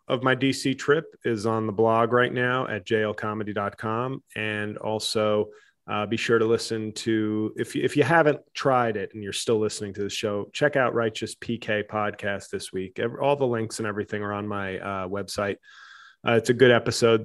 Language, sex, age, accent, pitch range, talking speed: English, male, 30-49, American, 105-125 Hz, 195 wpm